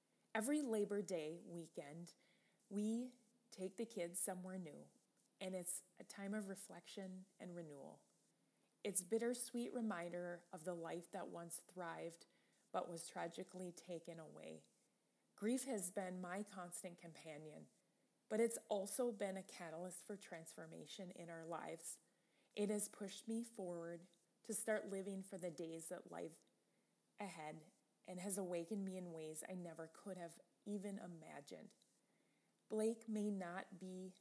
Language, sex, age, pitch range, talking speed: English, female, 30-49, 170-205 Hz, 140 wpm